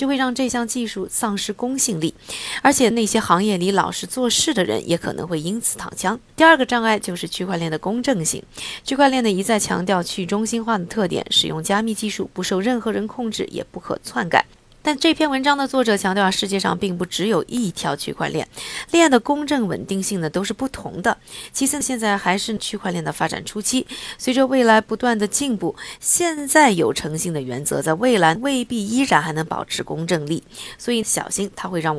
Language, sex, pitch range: Chinese, female, 175-250 Hz